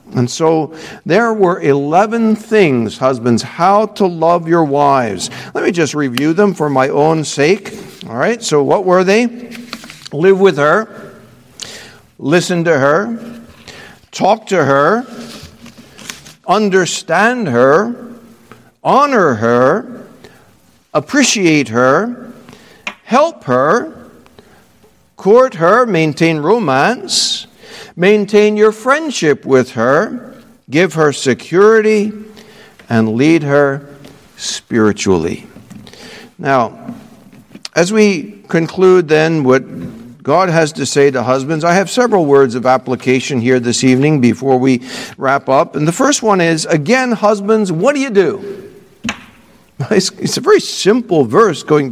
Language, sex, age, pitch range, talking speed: English, male, 60-79, 140-220 Hz, 120 wpm